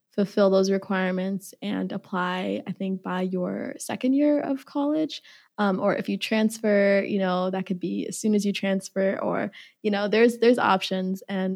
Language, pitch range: English, 190-225 Hz